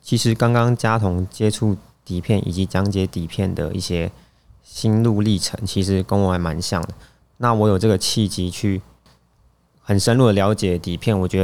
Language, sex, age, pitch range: Chinese, male, 20-39, 85-105 Hz